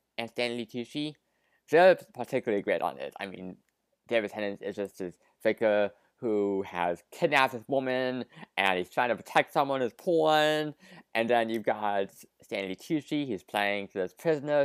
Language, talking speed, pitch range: English, 160 wpm, 105-160 Hz